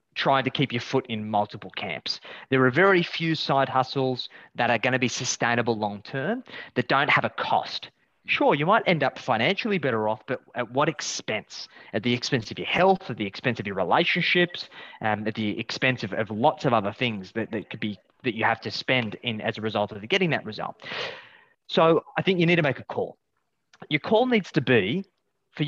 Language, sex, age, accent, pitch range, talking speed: English, male, 20-39, Australian, 115-170 Hz, 215 wpm